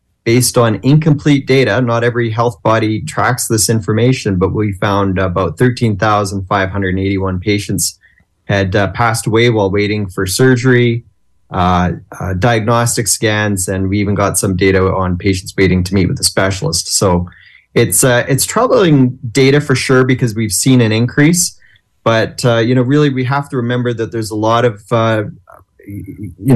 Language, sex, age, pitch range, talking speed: English, male, 30-49, 100-120 Hz, 165 wpm